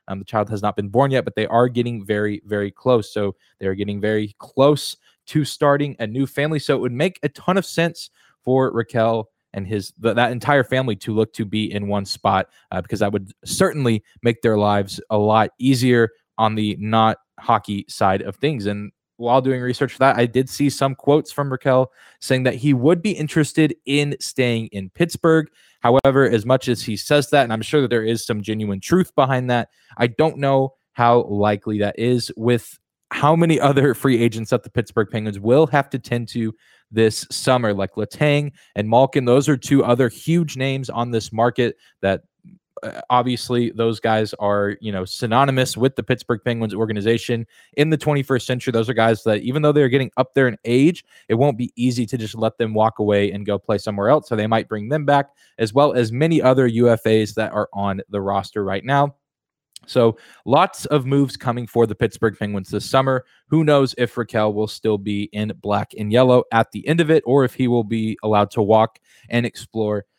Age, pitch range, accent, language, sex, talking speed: 20-39, 110-135 Hz, American, English, male, 210 wpm